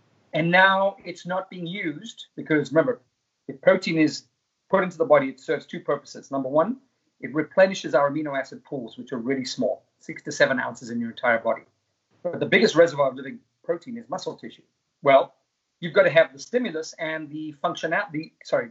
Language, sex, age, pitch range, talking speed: English, male, 40-59, 140-190 Hz, 190 wpm